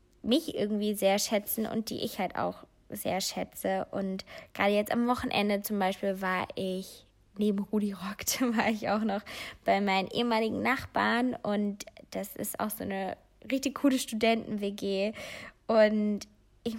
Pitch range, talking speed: 200-235 Hz, 150 wpm